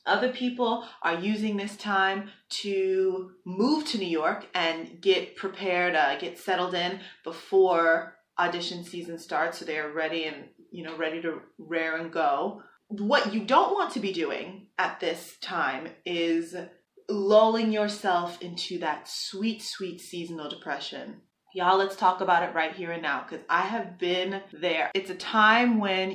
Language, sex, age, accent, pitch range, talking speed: English, female, 20-39, American, 175-215 Hz, 160 wpm